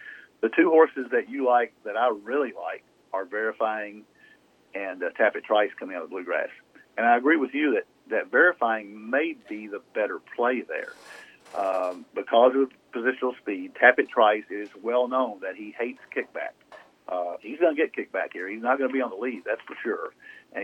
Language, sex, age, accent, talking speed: English, male, 50-69, American, 195 wpm